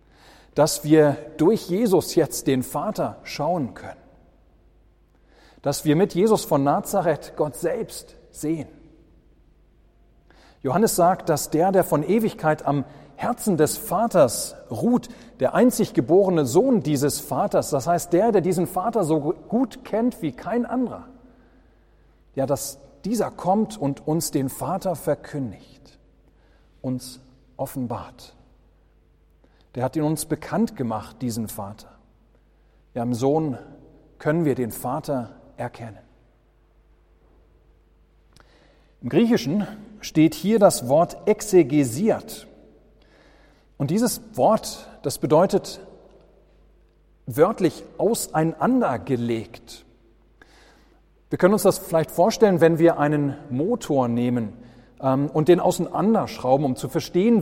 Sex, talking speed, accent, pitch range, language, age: male, 110 wpm, German, 125-180 Hz, German, 40-59